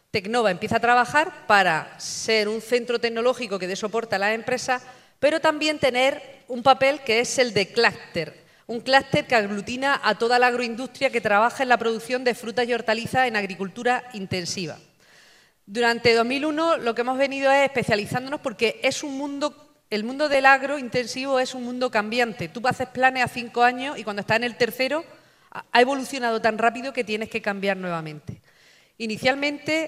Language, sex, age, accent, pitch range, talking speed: Spanish, female, 40-59, Spanish, 215-265 Hz, 175 wpm